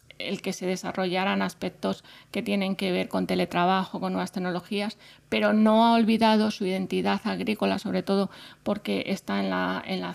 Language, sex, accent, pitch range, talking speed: Spanish, female, Spanish, 185-210 Hz, 165 wpm